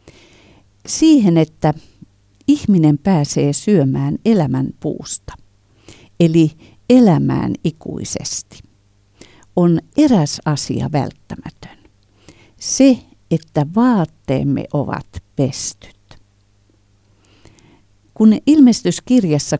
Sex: female